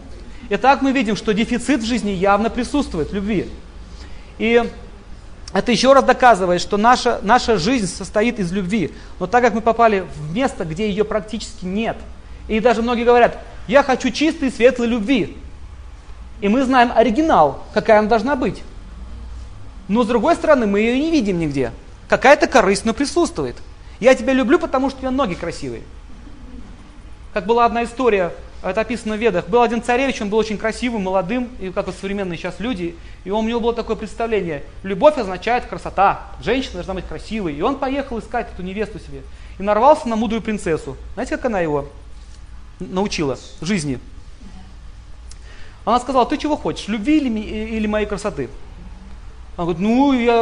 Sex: male